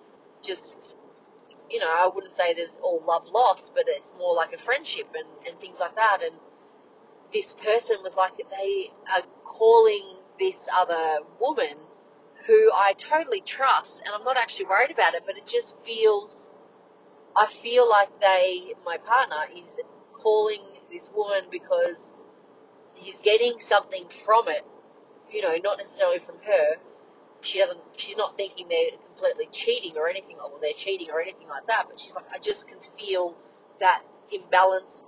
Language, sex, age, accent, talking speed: English, female, 30-49, Australian, 165 wpm